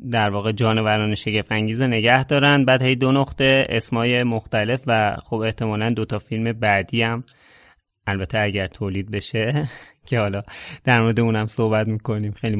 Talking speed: 150 wpm